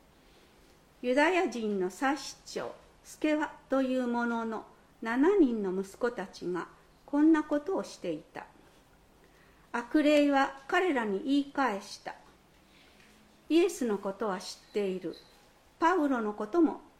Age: 50-69